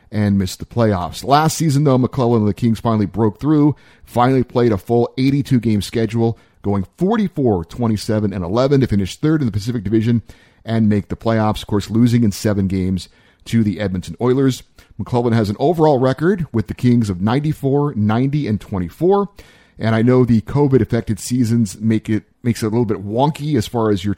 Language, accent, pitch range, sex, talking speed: English, American, 105-130 Hz, male, 195 wpm